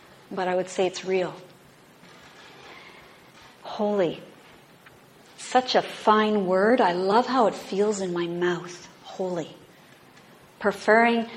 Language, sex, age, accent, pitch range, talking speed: English, female, 50-69, American, 180-205 Hz, 110 wpm